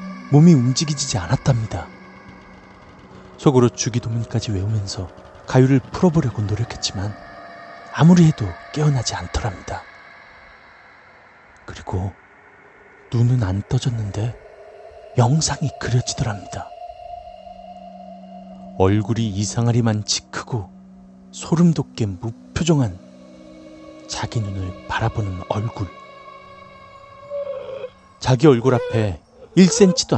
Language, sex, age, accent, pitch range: Korean, male, 30-49, native, 105-170 Hz